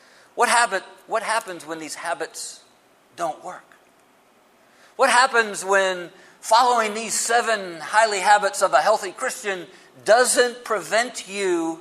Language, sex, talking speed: English, male, 115 wpm